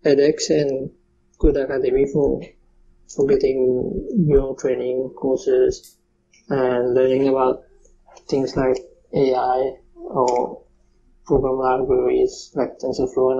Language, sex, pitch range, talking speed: English, male, 140-185 Hz, 100 wpm